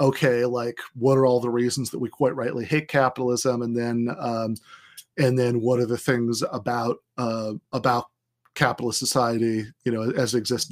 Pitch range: 120-145 Hz